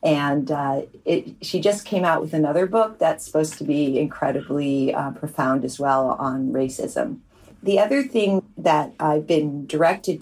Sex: female